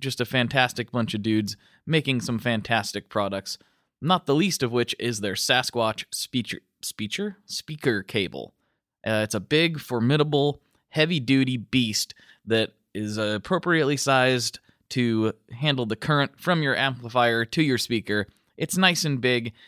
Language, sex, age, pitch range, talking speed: English, male, 20-39, 110-145 Hz, 140 wpm